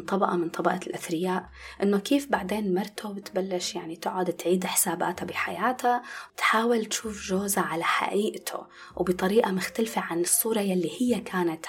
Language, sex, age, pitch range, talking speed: Arabic, female, 20-39, 180-245 Hz, 135 wpm